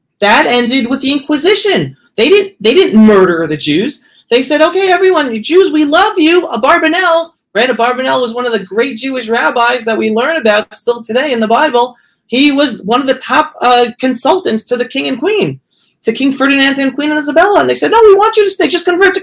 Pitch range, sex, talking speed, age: 220-325 Hz, male, 230 wpm, 40-59